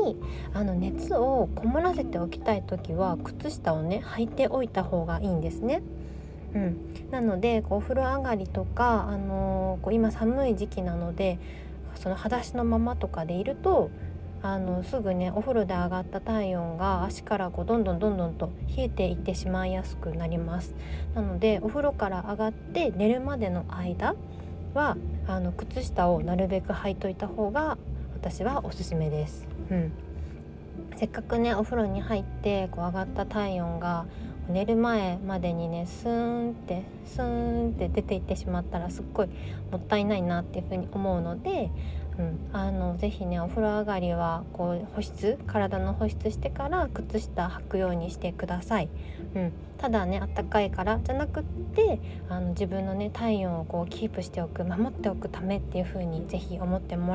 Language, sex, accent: Japanese, female, native